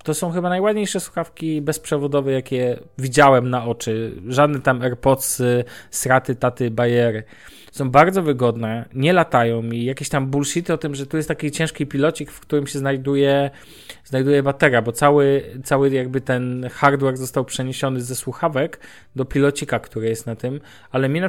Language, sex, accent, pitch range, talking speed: Polish, male, native, 125-160 Hz, 165 wpm